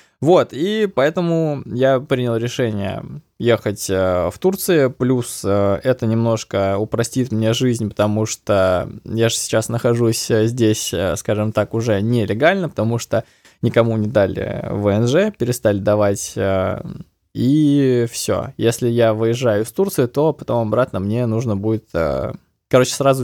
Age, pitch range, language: 20-39, 110-130 Hz, Russian